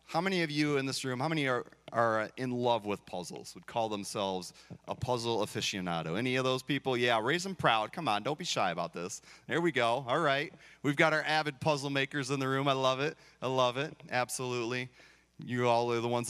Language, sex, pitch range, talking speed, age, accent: English, male, 115-150 Hz, 230 wpm, 30-49, American